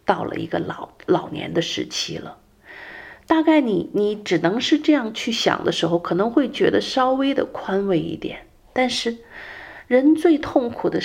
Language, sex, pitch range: Chinese, female, 175-275 Hz